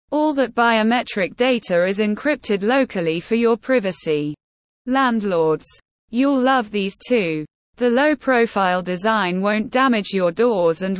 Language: English